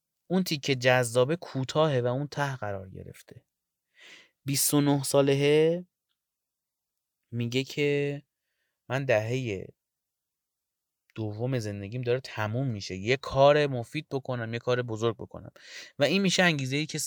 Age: 30-49